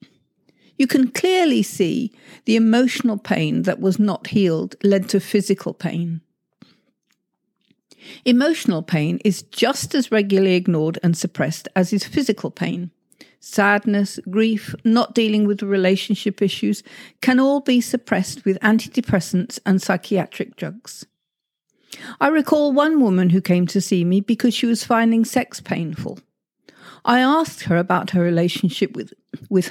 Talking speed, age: 135 wpm, 50-69